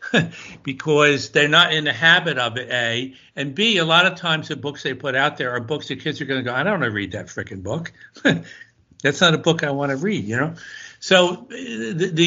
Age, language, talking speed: 60-79, English, 240 wpm